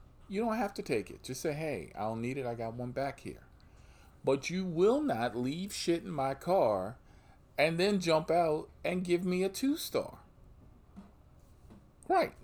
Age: 40-59